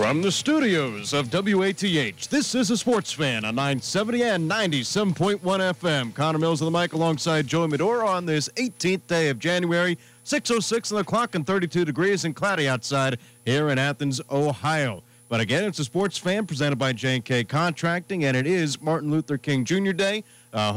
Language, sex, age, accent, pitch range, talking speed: English, male, 40-59, American, 120-170 Hz, 180 wpm